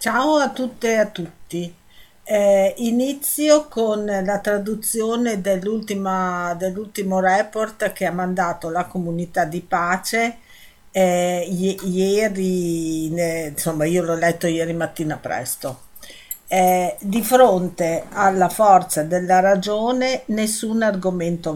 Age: 50-69